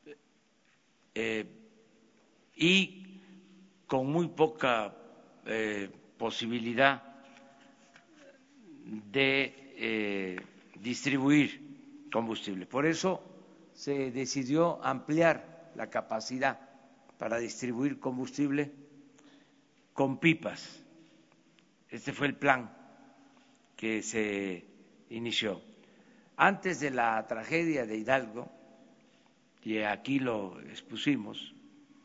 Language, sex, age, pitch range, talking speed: Spanish, male, 60-79, 115-165 Hz, 75 wpm